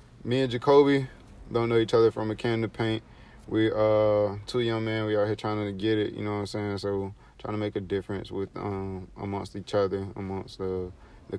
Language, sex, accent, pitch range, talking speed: English, male, American, 100-110 Hz, 225 wpm